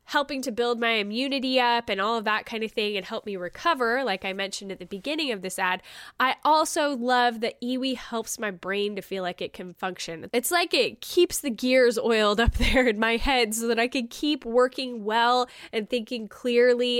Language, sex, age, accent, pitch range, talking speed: English, female, 10-29, American, 210-270 Hz, 220 wpm